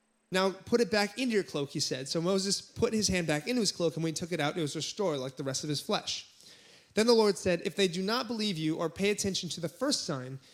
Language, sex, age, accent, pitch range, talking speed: English, male, 30-49, American, 150-200 Hz, 285 wpm